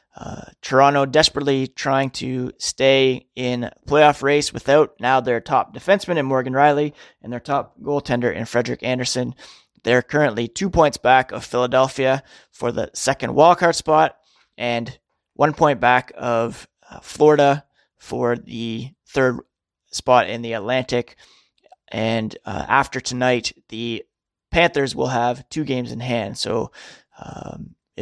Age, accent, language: 20-39, American, English